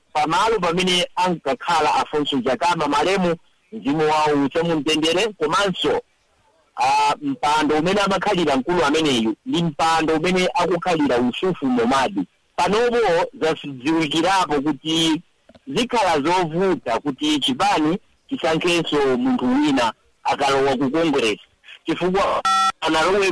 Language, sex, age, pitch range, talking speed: English, male, 50-69, 145-205 Hz, 110 wpm